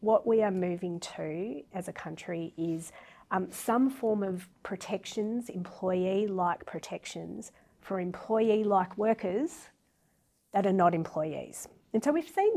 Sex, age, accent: female, 30-49, Australian